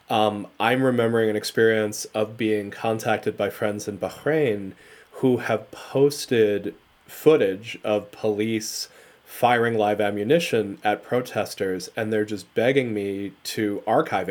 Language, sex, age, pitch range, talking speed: English, male, 30-49, 105-125 Hz, 125 wpm